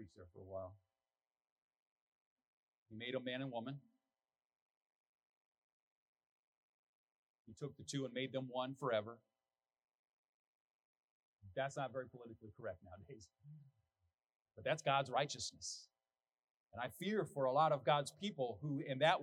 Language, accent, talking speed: English, American, 130 wpm